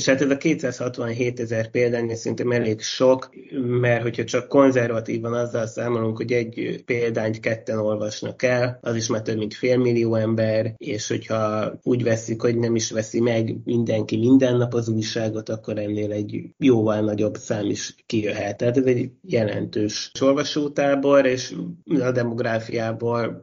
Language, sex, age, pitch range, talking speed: Hungarian, male, 30-49, 110-125 Hz, 150 wpm